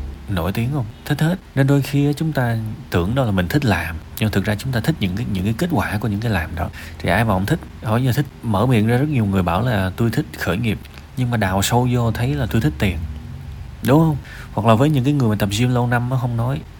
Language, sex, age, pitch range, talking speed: Vietnamese, male, 20-39, 90-125 Hz, 280 wpm